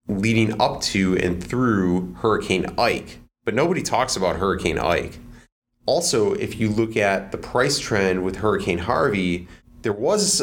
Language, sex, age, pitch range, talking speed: English, male, 30-49, 90-105 Hz, 150 wpm